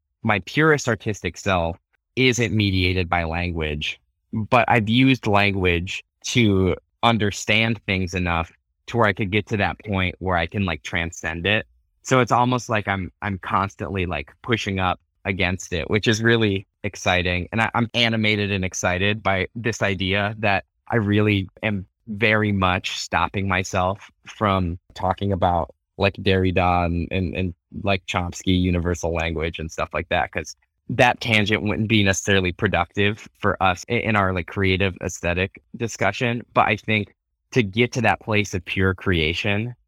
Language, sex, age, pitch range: English, male, 20-39, 90-105 Hz